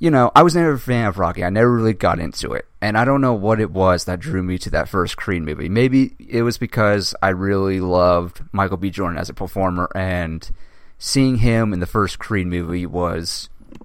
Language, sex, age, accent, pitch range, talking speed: English, male, 30-49, American, 90-120 Hz, 225 wpm